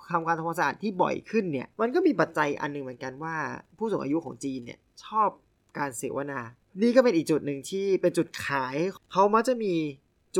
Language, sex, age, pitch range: Thai, male, 20-39, 140-185 Hz